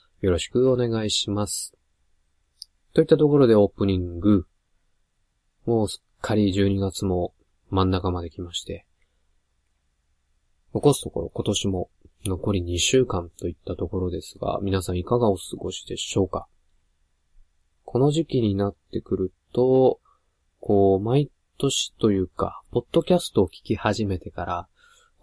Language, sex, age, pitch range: Japanese, male, 20-39, 85-110 Hz